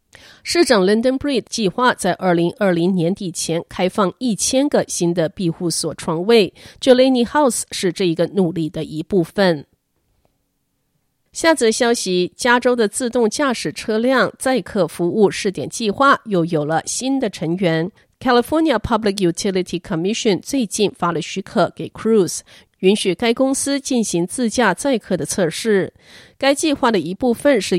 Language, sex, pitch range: Chinese, female, 175-245 Hz